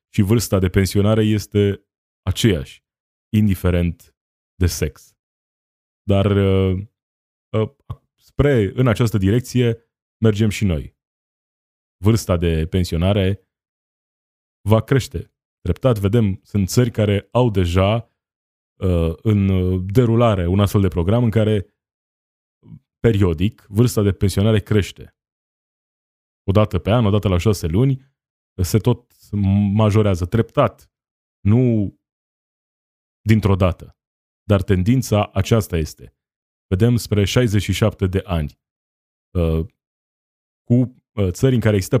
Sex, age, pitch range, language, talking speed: male, 20-39, 90-110 Hz, Romanian, 105 wpm